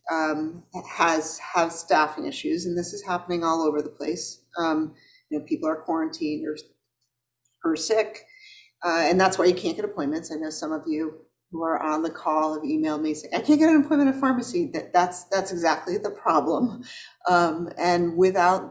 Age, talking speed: 40-59, 195 wpm